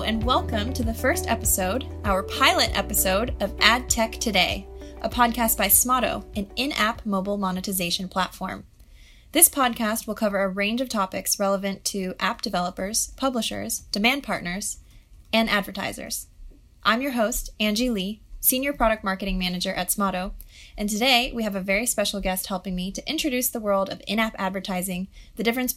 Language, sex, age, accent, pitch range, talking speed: English, female, 20-39, American, 190-240 Hz, 160 wpm